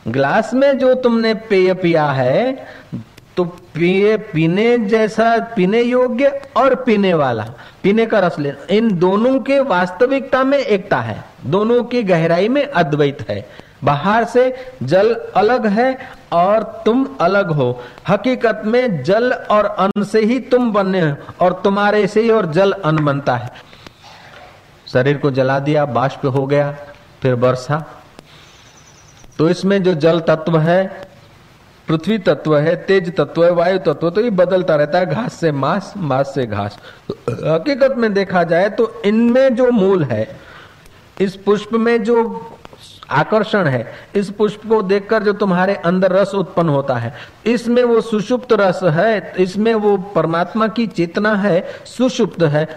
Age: 50-69